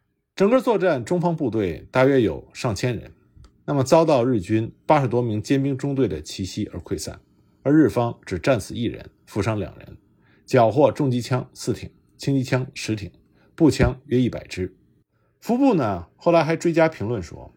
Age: 50-69